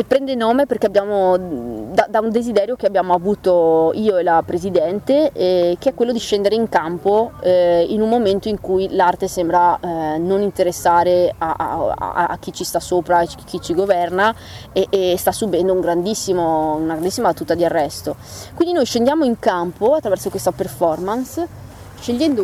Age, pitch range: 20-39, 175-220 Hz